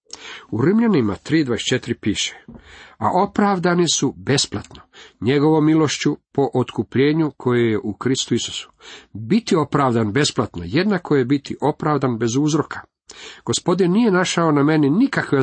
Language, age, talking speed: Croatian, 50-69, 125 wpm